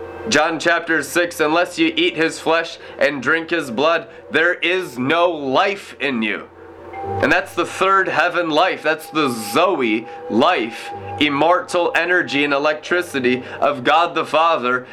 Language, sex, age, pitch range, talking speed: English, male, 30-49, 155-225 Hz, 145 wpm